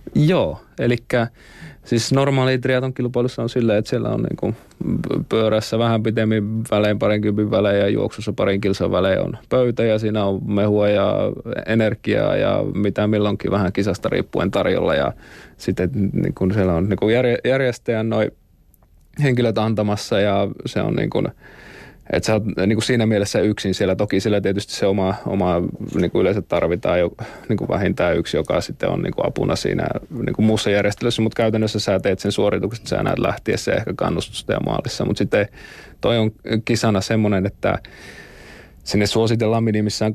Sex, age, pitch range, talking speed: male, 30-49, 100-115 Hz, 165 wpm